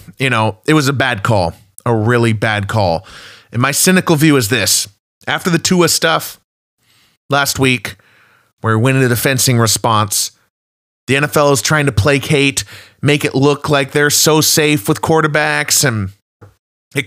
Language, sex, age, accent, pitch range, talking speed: English, male, 30-49, American, 115-170 Hz, 165 wpm